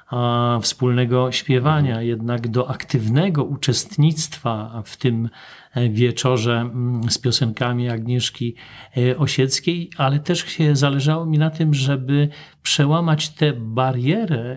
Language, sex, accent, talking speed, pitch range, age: Polish, male, native, 100 wpm, 120-145 Hz, 40-59